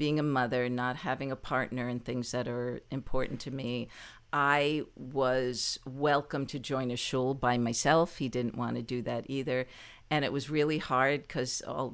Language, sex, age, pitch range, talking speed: English, female, 50-69, 125-145 Hz, 185 wpm